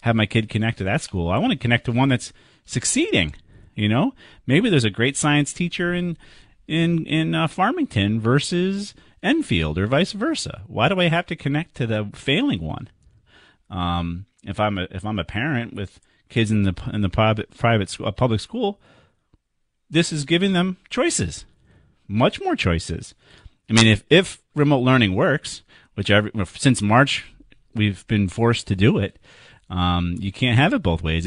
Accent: American